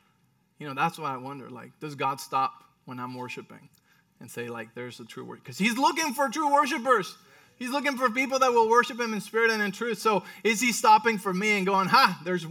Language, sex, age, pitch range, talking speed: English, male, 20-39, 140-195 Hz, 235 wpm